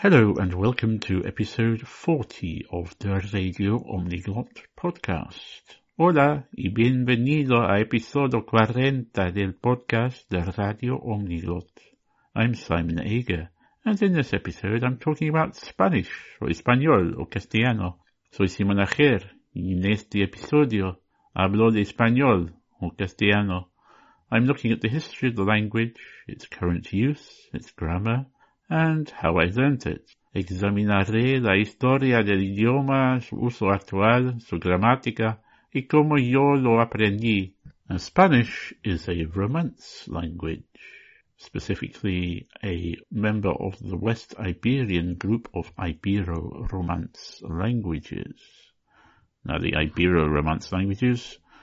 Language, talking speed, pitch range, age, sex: English, 120 wpm, 90-125 Hz, 60-79, male